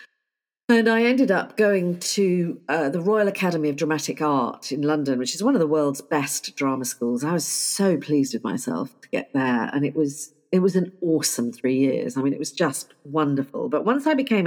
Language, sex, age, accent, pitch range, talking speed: English, female, 50-69, British, 150-225 Hz, 215 wpm